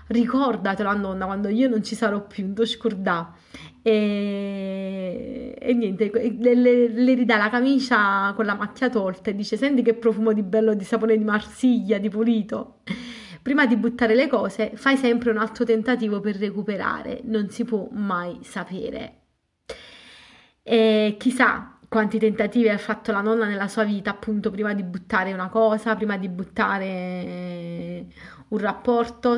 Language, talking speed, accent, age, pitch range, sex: Italian, 150 wpm, native, 30-49, 195-230 Hz, female